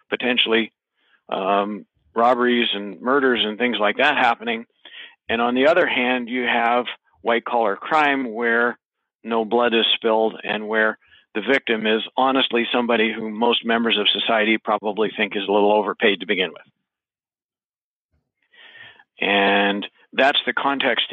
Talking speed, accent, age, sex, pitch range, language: 140 wpm, American, 50-69, male, 105-120 Hz, English